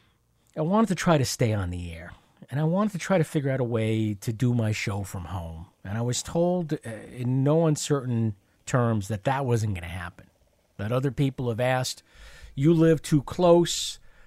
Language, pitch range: English, 110-155 Hz